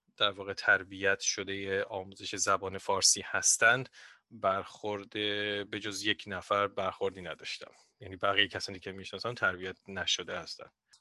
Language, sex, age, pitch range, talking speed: Persian, male, 30-49, 100-145 Hz, 120 wpm